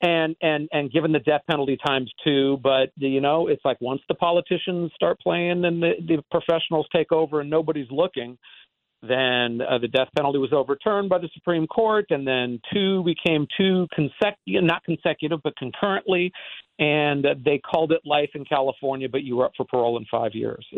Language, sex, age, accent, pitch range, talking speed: English, male, 50-69, American, 130-170 Hz, 195 wpm